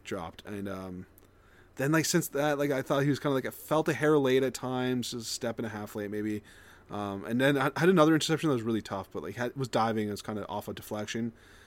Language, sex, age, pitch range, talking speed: English, male, 20-39, 100-140 Hz, 260 wpm